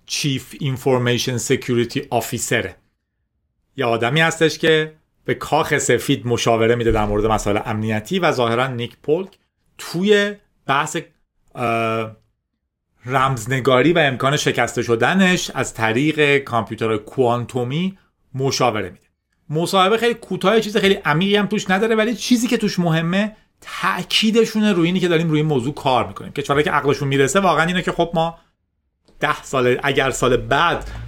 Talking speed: 140 wpm